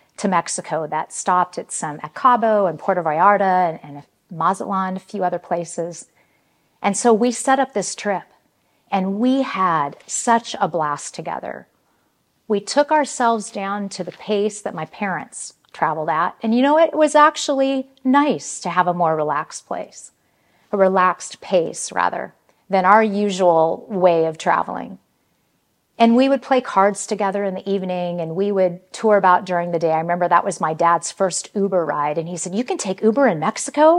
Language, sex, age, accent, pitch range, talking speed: English, female, 40-59, American, 175-230 Hz, 175 wpm